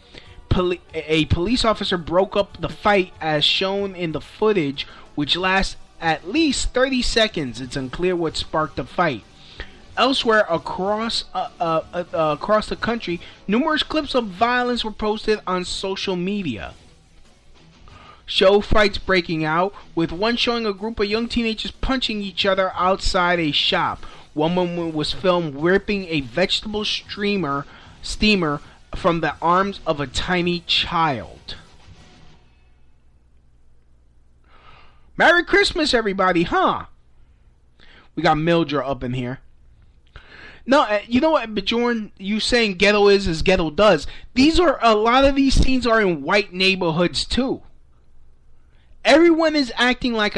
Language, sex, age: English, male, 20-39